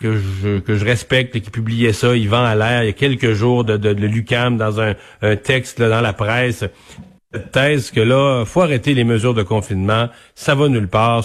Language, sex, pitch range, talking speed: French, male, 115-150 Hz, 235 wpm